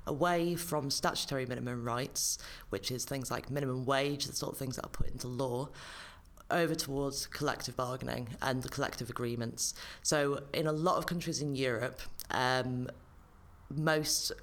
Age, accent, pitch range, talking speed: 30-49, British, 120-140 Hz, 160 wpm